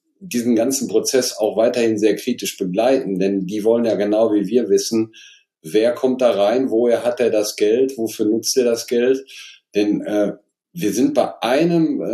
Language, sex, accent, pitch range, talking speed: German, male, German, 105-140 Hz, 180 wpm